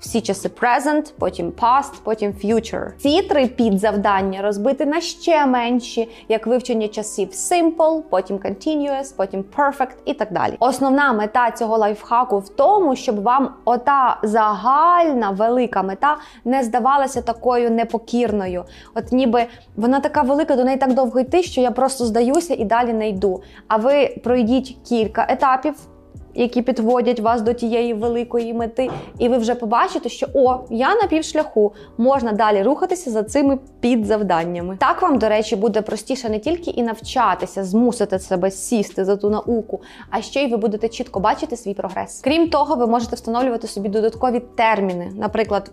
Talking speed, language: 155 wpm, Ukrainian